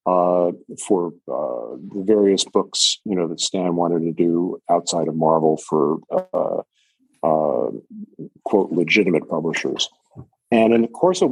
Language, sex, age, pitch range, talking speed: English, male, 50-69, 95-120 Hz, 145 wpm